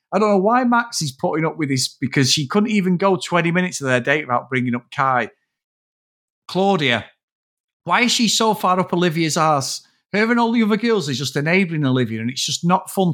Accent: British